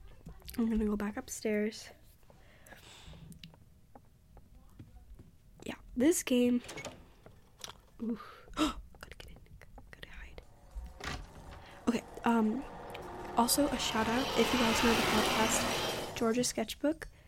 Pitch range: 220-250 Hz